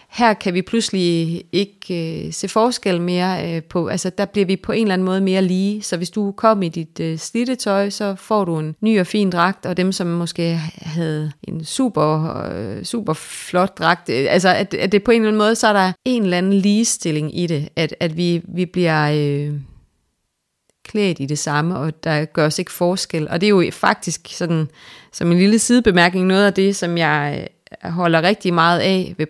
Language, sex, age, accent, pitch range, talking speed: Danish, female, 30-49, native, 160-190 Hz, 215 wpm